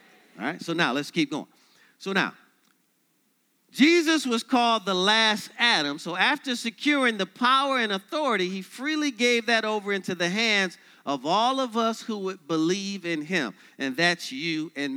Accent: American